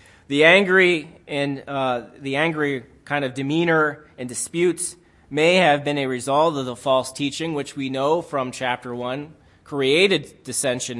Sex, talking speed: male, 155 wpm